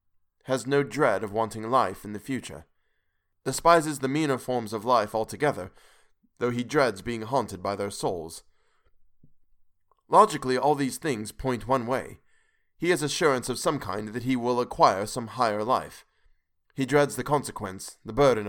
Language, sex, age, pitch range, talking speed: English, male, 20-39, 90-135 Hz, 160 wpm